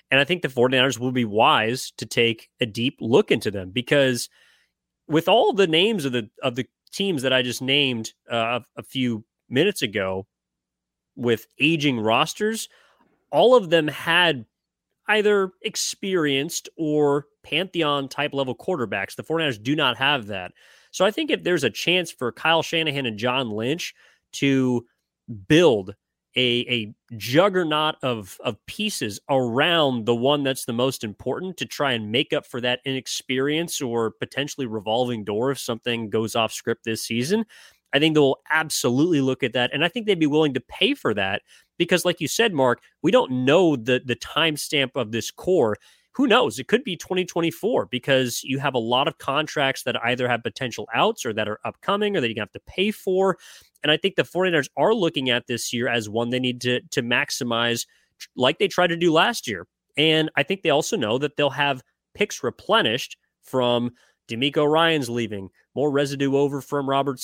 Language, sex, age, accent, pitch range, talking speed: English, male, 30-49, American, 120-155 Hz, 185 wpm